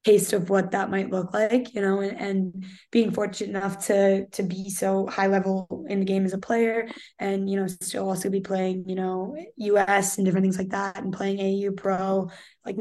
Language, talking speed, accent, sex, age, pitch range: English, 215 wpm, American, female, 10-29, 195-210 Hz